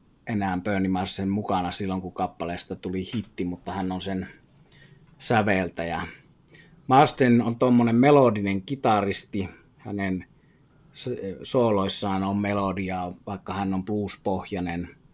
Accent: native